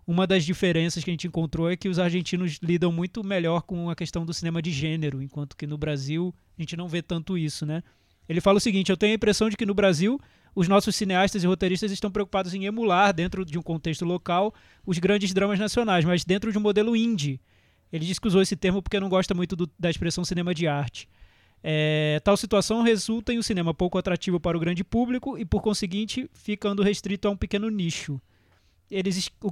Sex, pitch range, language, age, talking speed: male, 170-205 Hz, Portuguese, 20-39, 220 wpm